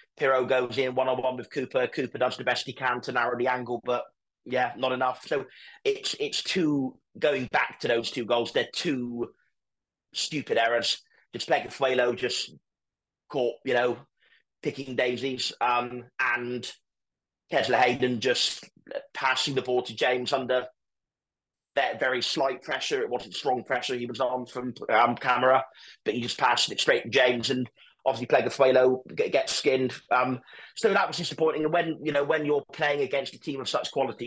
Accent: British